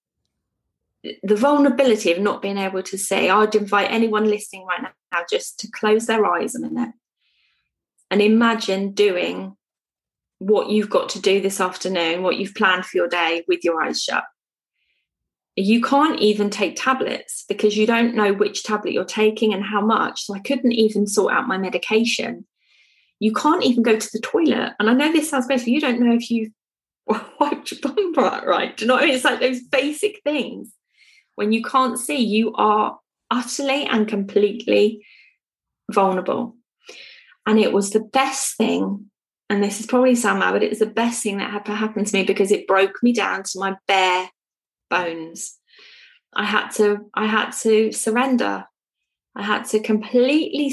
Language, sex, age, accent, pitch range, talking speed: English, female, 20-39, British, 200-250 Hz, 180 wpm